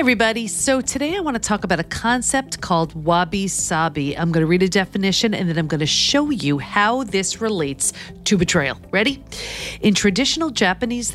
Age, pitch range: 40-59, 160-230 Hz